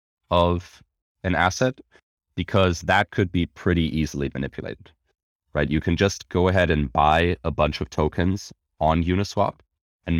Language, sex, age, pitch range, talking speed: English, male, 30-49, 75-85 Hz, 145 wpm